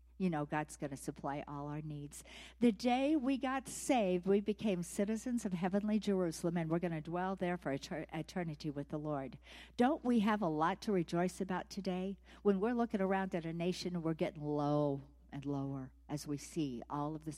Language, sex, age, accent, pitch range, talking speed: English, female, 60-79, American, 140-195 Hz, 200 wpm